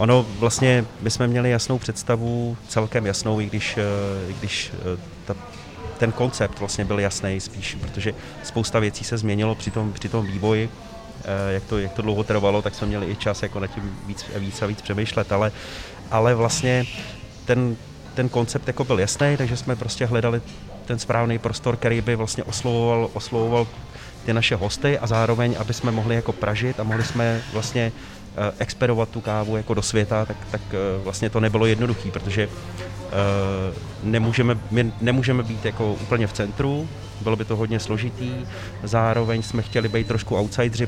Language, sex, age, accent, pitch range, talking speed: Czech, male, 30-49, native, 105-115 Hz, 170 wpm